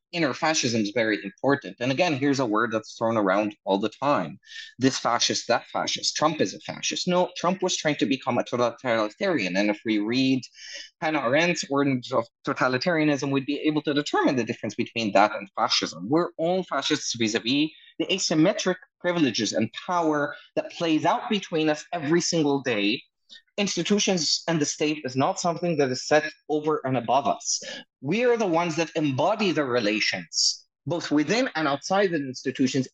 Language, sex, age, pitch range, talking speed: English, male, 20-39, 130-175 Hz, 175 wpm